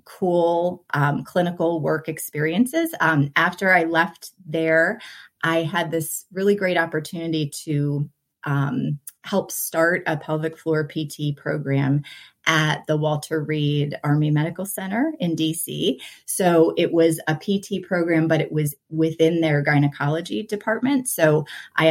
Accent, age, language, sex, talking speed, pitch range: American, 30-49, English, female, 135 wpm, 150-180 Hz